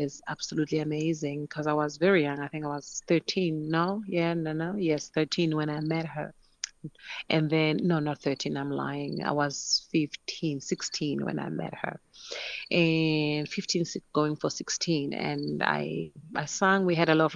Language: English